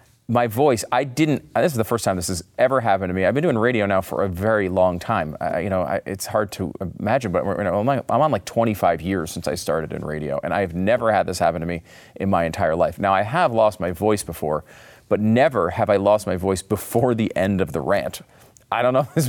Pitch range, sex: 90-115 Hz, male